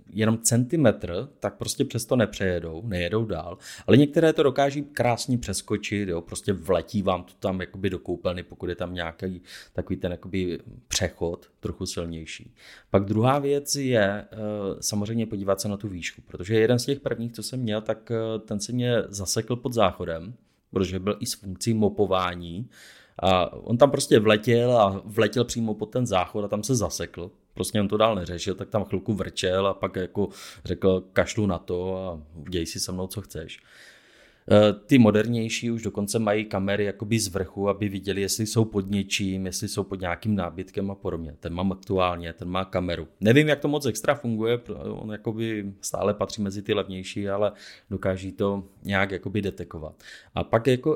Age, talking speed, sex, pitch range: 30-49, 175 wpm, male, 95-115 Hz